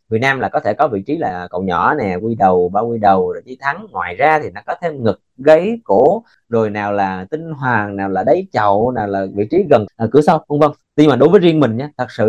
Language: Vietnamese